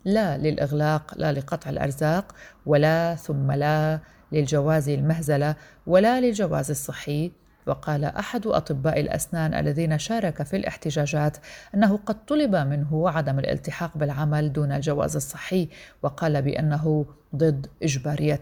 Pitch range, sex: 150-175 Hz, female